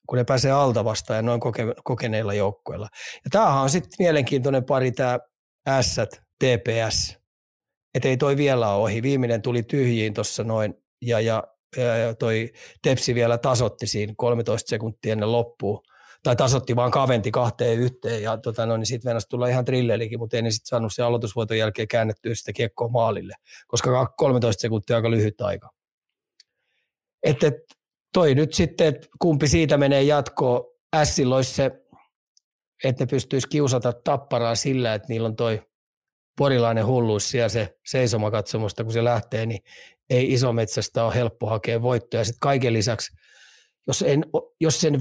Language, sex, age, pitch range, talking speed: Finnish, male, 30-49, 115-135 Hz, 150 wpm